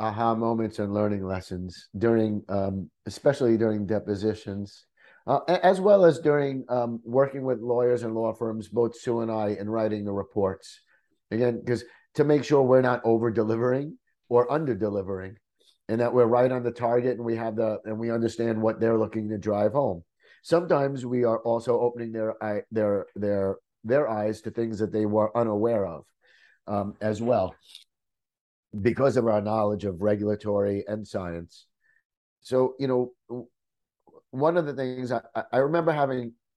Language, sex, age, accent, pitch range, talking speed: English, male, 50-69, American, 105-125 Hz, 170 wpm